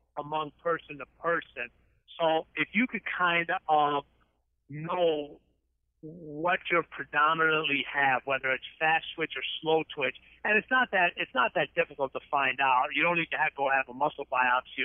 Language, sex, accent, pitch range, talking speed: English, male, American, 135-160 Hz, 180 wpm